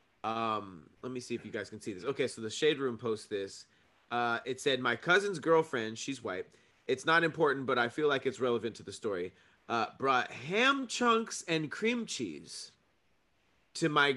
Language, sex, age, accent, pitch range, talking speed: English, male, 30-49, American, 110-150 Hz, 195 wpm